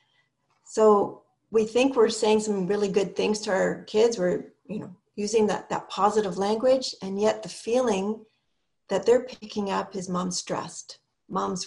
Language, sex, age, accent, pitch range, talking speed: English, female, 40-59, American, 185-220 Hz, 165 wpm